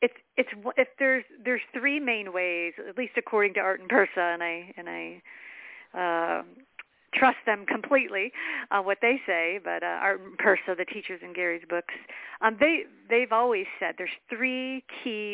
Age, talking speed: 50-69, 180 wpm